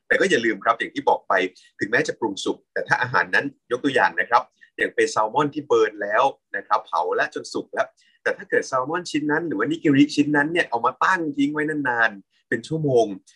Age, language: 30-49, Thai